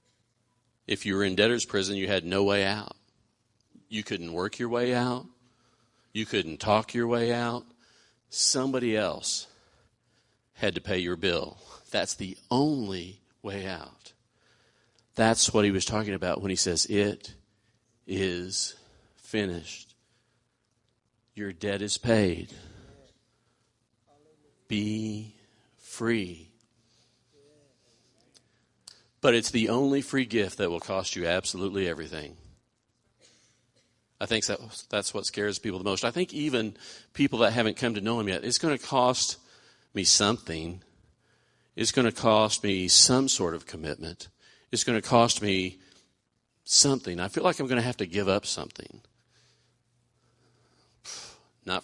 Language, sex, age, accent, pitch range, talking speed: English, male, 50-69, American, 95-120 Hz, 135 wpm